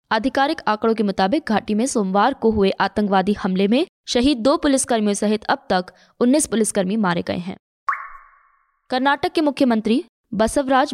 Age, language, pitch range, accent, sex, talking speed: 20-39, Hindi, 205-260 Hz, native, female, 150 wpm